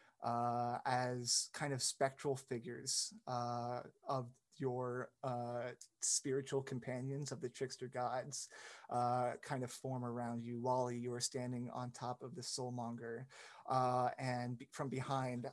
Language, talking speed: English, 135 wpm